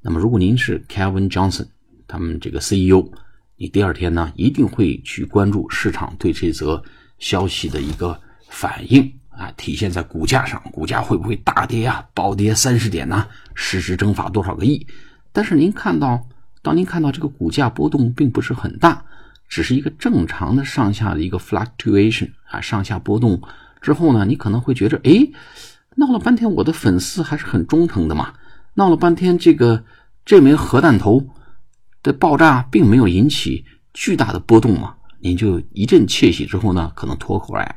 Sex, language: male, Chinese